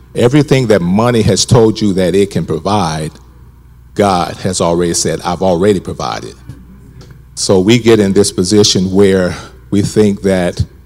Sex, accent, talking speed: male, American, 150 wpm